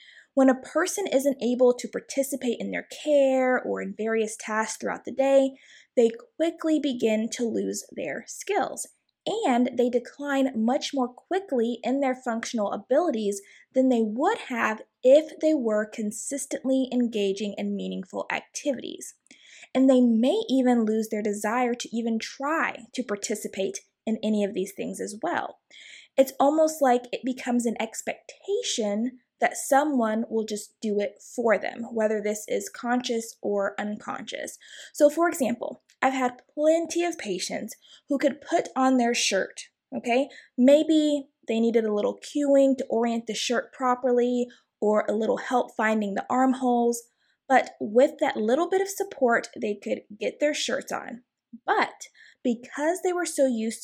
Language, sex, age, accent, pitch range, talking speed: English, female, 20-39, American, 220-275 Hz, 155 wpm